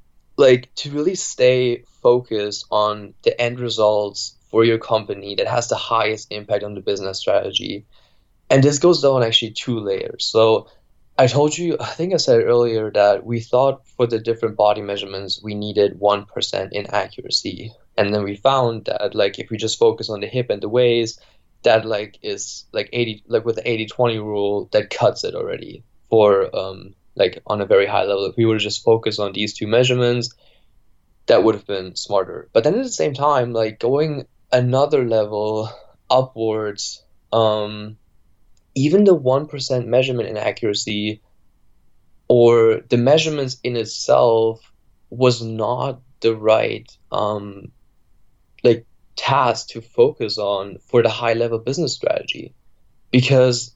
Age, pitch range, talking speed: 10-29, 105-130 Hz, 160 wpm